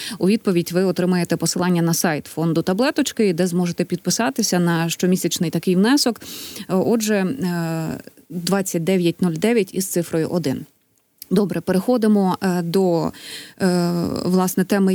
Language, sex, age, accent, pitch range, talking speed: Ukrainian, female, 20-39, native, 180-210 Hz, 105 wpm